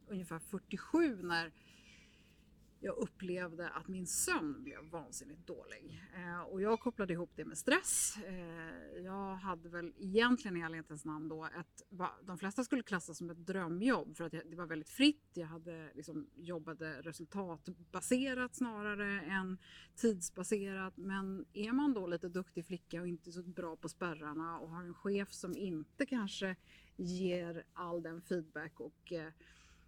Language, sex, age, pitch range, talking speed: Swedish, female, 30-49, 165-200 Hz, 155 wpm